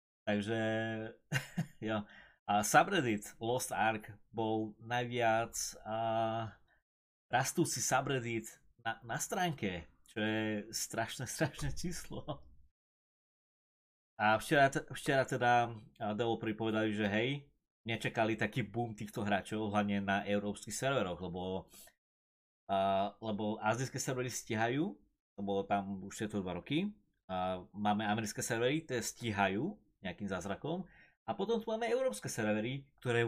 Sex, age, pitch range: male, 30-49, 100-120 Hz